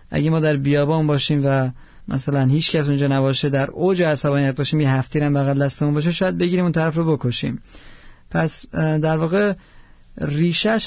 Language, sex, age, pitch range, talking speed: Persian, male, 30-49, 145-180 Hz, 170 wpm